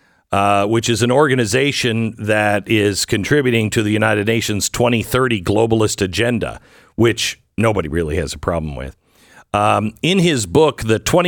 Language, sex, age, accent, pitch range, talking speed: English, male, 50-69, American, 110-155 Hz, 145 wpm